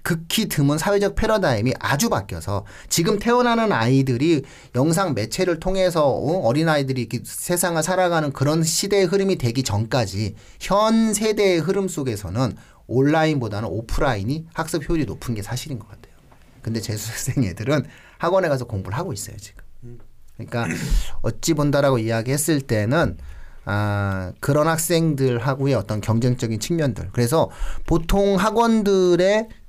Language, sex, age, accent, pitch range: Korean, male, 30-49, native, 110-165 Hz